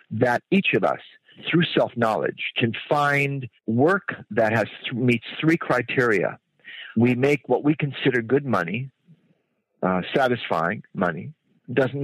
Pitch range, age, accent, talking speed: 115-145 Hz, 50-69, American, 125 wpm